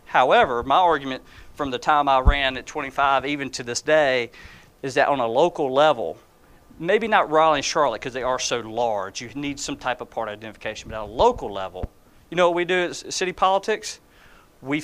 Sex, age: male, 40-59